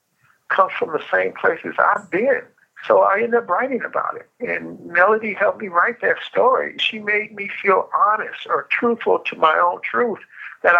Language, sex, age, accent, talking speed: English, male, 60-79, American, 185 wpm